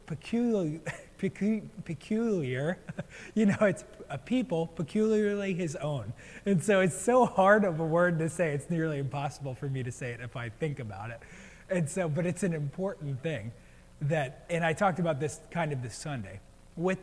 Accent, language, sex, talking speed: American, English, male, 180 wpm